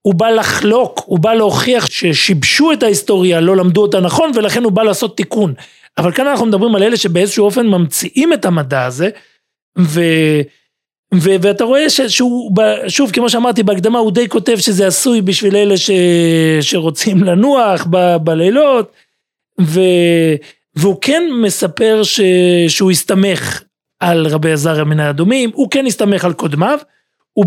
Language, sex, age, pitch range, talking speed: Hebrew, male, 40-59, 175-225 Hz, 155 wpm